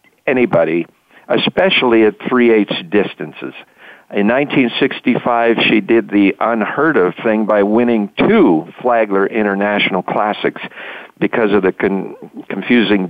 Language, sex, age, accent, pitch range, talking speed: English, male, 50-69, American, 100-130 Hz, 110 wpm